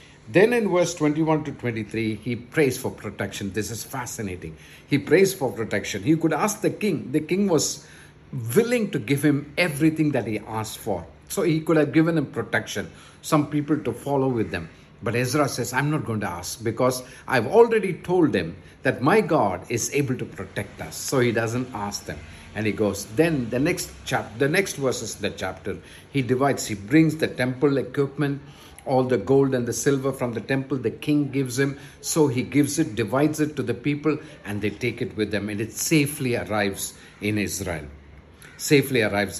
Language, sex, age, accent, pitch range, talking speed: English, male, 50-69, Indian, 105-150 Hz, 195 wpm